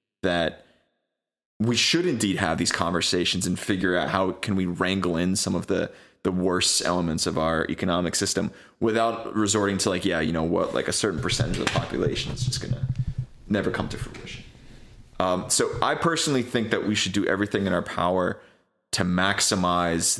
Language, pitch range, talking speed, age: English, 95-120 Hz, 185 wpm, 20-39